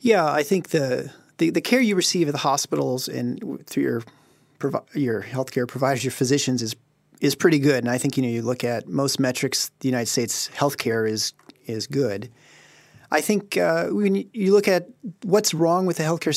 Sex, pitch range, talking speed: male, 125-160 Hz, 195 wpm